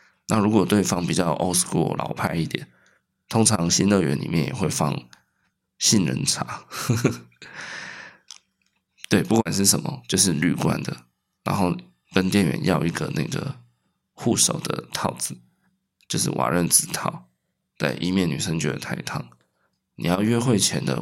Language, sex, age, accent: Chinese, male, 20-39, native